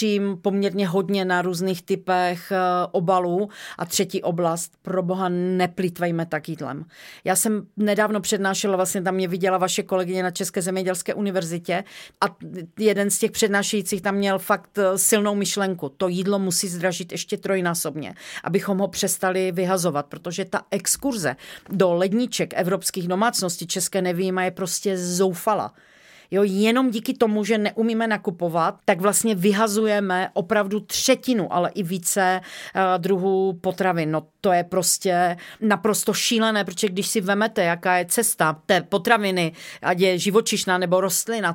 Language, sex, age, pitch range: Czech, female, 40-59, 180-205 Hz